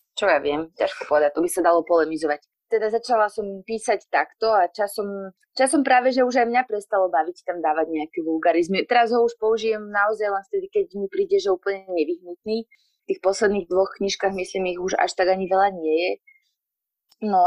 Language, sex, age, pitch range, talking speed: Slovak, female, 20-39, 180-235 Hz, 195 wpm